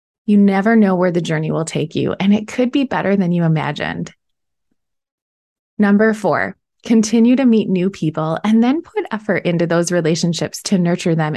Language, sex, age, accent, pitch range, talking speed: English, female, 20-39, American, 175-220 Hz, 180 wpm